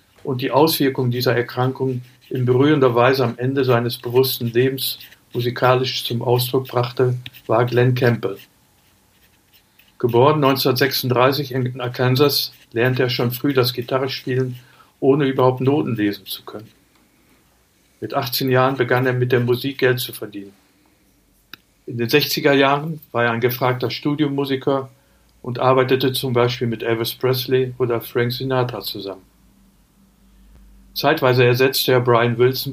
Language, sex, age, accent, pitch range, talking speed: German, male, 60-79, German, 120-130 Hz, 135 wpm